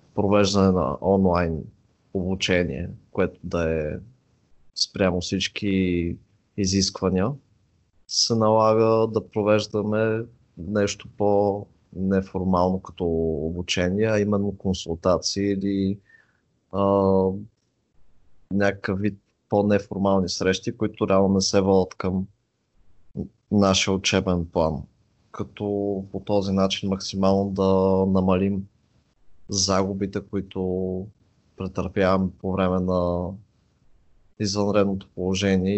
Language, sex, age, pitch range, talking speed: Bulgarian, male, 20-39, 95-105 Hz, 85 wpm